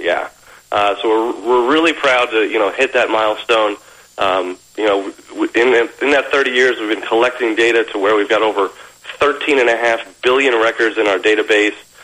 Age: 40-59